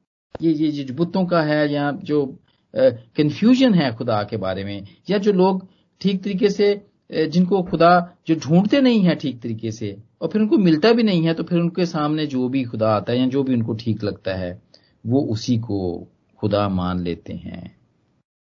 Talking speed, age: 190 wpm, 40-59